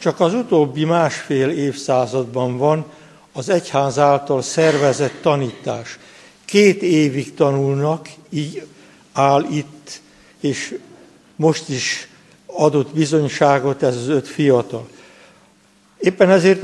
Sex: male